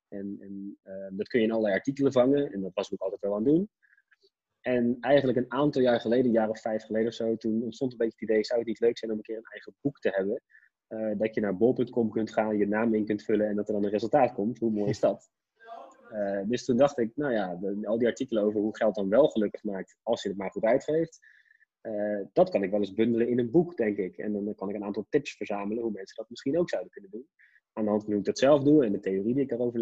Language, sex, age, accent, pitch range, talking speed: Dutch, male, 20-39, Dutch, 105-125 Hz, 280 wpm